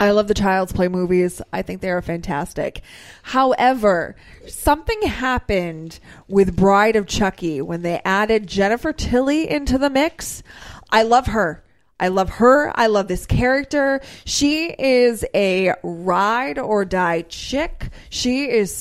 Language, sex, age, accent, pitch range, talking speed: English, female, 20-39, American, 180-240 Hz, 145 wpm